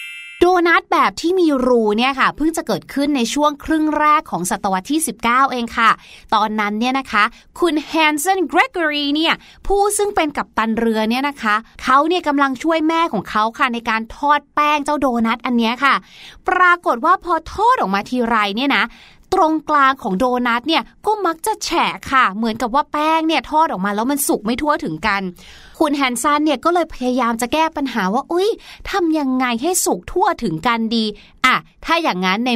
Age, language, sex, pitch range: 20-39, Thai, female, 230-320 Hz